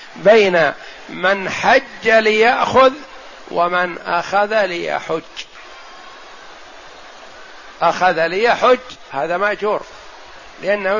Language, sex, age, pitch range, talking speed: Arabic, male, 60-79, 175-220 Hz, 65 wpm